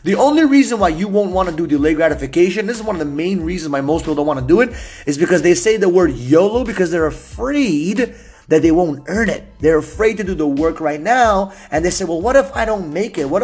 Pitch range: 155-215 Hz